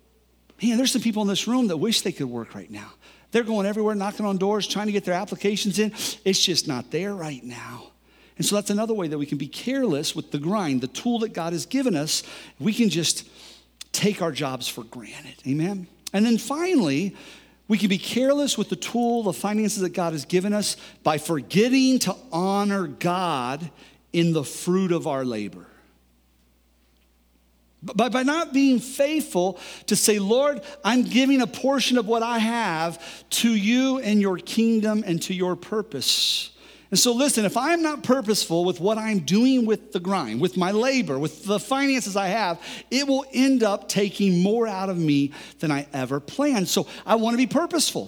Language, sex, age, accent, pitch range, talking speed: English, male, 50-69, American, 170-235 Hz, 195 wpm